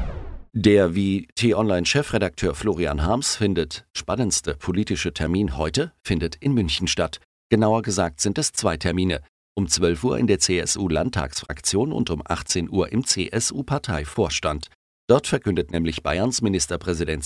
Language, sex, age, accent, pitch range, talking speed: German, male, 50-69, German, 85-105 Hz, 130 wpm